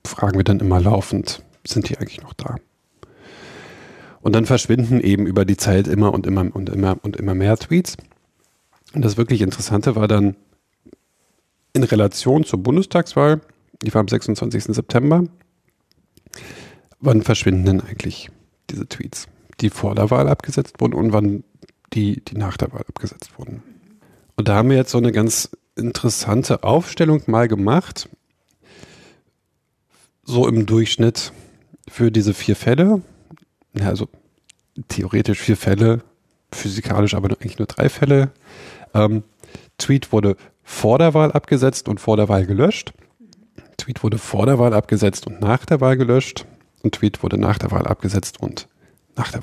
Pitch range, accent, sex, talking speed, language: 100-125 Hz, German, male, 150 wpm, German